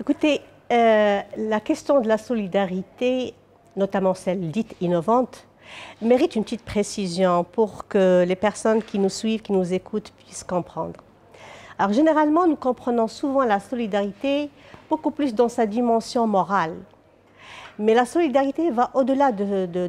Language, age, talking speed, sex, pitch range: French, 50-69, 140 wpm, female, 200-275 Hz